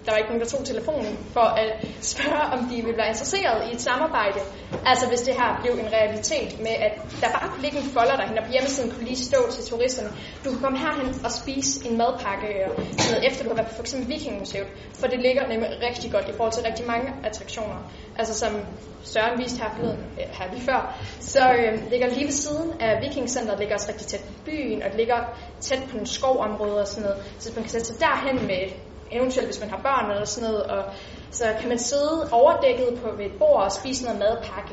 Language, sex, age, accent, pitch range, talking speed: Danish, female, 20-39, native, 215-260 Hz, 230 wpm